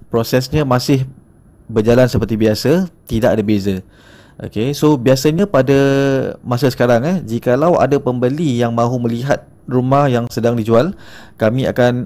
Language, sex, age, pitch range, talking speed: Malay, male, 20-39, 110-135 Hz, 135 wpm